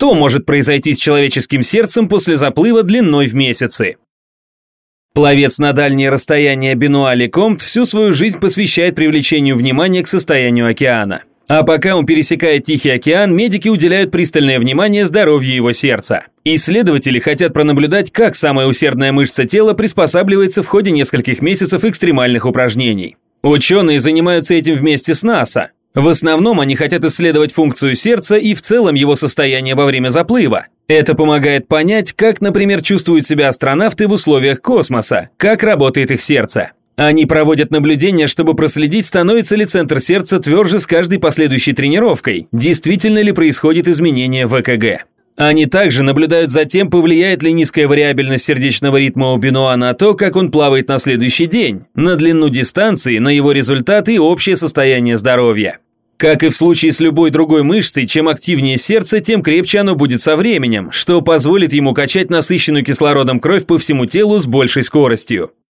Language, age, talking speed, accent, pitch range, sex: Russian, 30-49, 155 wpm, native, 135-180 Hz, male